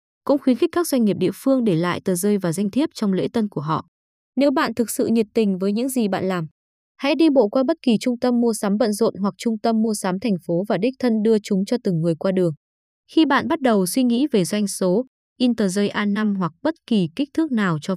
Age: 20-39